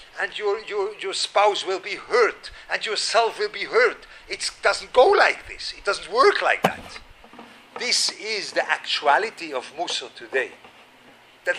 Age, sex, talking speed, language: 50-69, male, 160 wpm, English